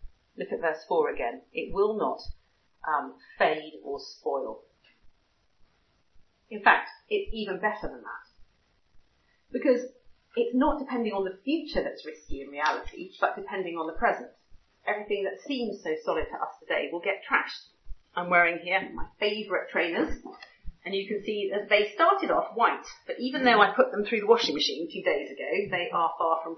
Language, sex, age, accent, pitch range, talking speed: English, female, 40-59, British, 175-245 Hz, 175 wpm